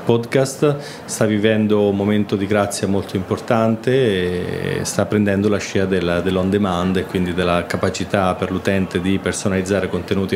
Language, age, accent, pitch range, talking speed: Italian, 30-49, native, 95-110 Hz, 150 wpm